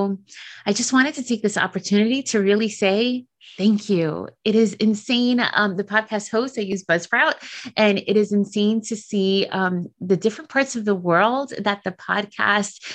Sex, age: female, 30-49